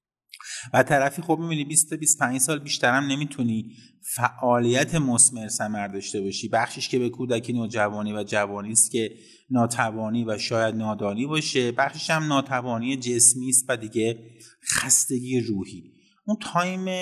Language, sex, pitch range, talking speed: Persian, male, 115-140 Hz, 140 wpm